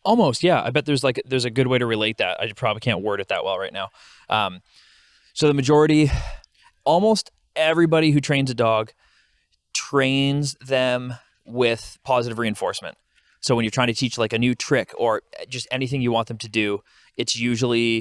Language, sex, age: English, male, 20-39